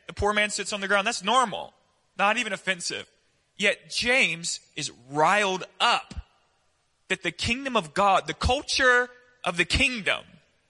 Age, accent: 20-39, American